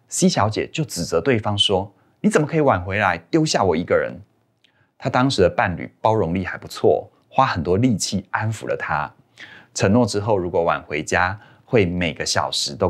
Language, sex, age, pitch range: Chinese, male, 30-49, 90-125 Hz